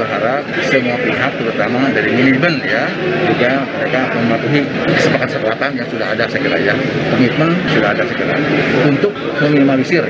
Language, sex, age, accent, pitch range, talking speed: Indonesian, male, 30-49, native, 170-210 Hz, 160 wpm